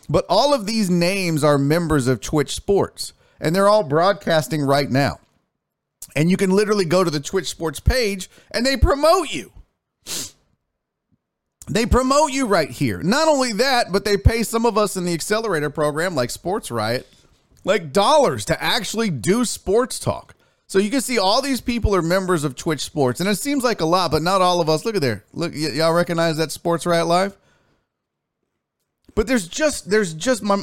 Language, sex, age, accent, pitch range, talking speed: English, male, 40-59, American, 130-195 Hz, 190 wpm